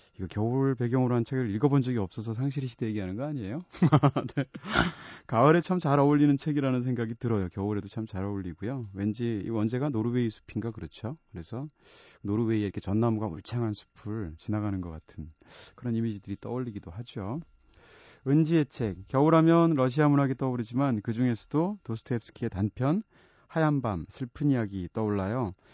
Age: 30-49